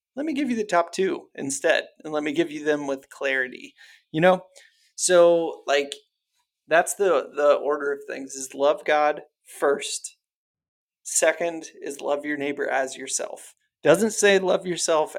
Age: 30-49